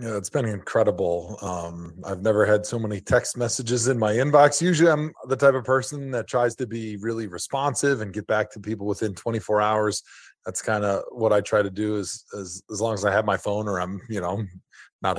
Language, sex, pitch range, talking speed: English, male, 105-135 Hz, 225 wpm